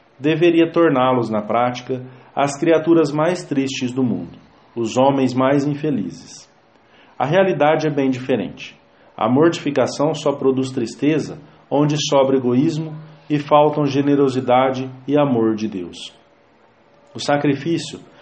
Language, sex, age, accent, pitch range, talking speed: English, male, 40-59, Brazilian, 120-155 Hz, 120 wpm